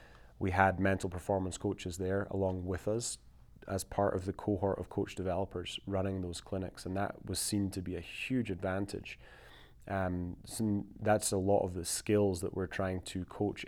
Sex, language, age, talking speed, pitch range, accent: male, English, 20-39, 185 wpm, 90-100 Hz, British